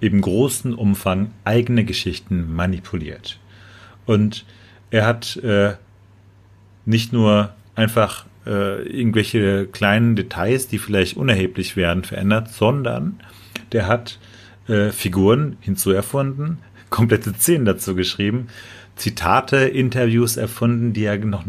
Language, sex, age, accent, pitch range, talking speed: German, male, 40-59, German, 100-120 Hz, 110 wpm